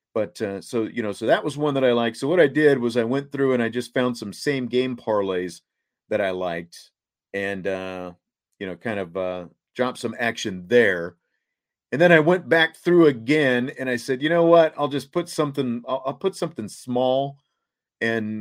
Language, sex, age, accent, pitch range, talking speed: English, male, 40-59, American, 100-135 Hz, 210 wpm